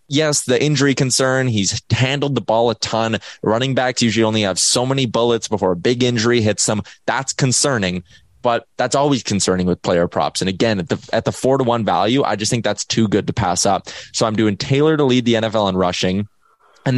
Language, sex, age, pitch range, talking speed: English, male, 20-39, 105-130 Hz, 220 wpm